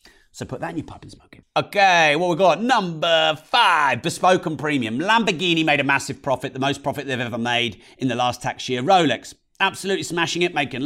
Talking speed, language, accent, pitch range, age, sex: 215 wpm, English, British, 115-165 Hz, 40-59, male